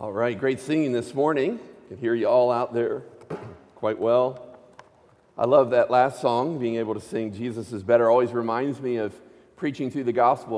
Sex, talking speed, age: male, 200 wpm, 50-69